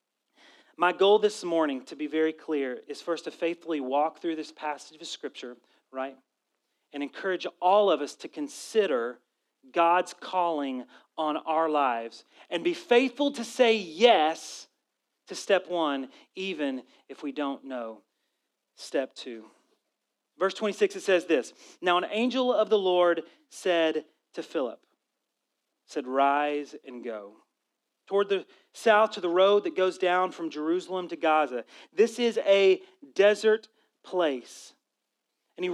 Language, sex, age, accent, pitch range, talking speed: English, male, 40-59, American, 160-215 Hz, 145 wpm